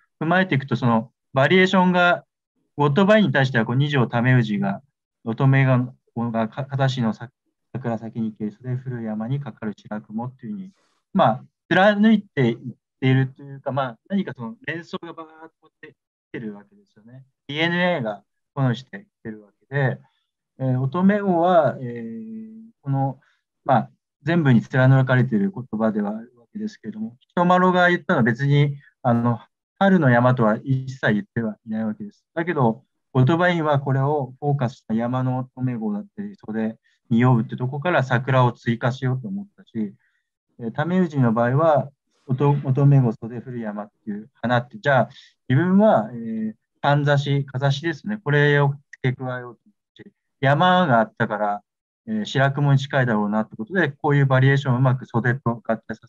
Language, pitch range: Japanese, 115-160 Hz